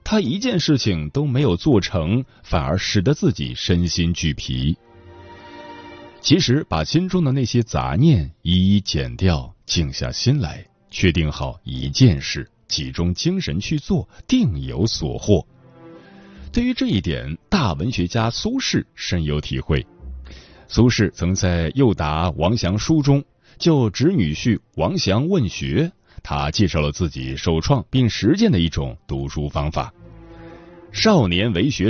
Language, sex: Chinese, male